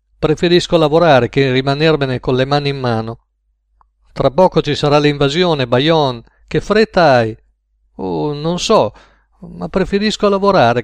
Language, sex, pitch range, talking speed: Italian, male, 125-175 Hz, 135 wpm